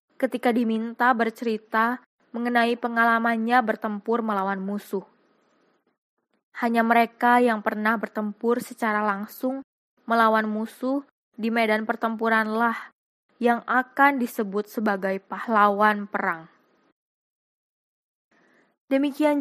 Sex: female